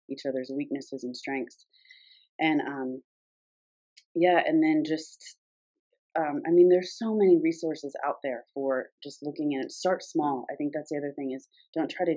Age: 30-49